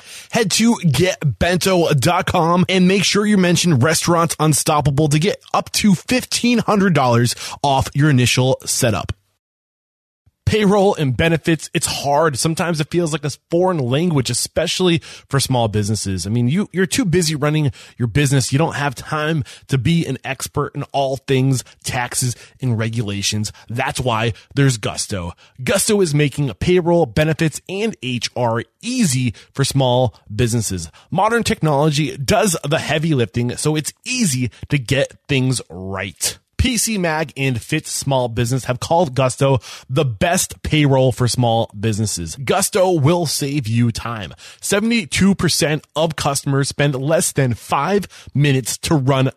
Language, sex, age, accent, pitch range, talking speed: English, male, 20-39, American, 120-165 Hz, 140 wpm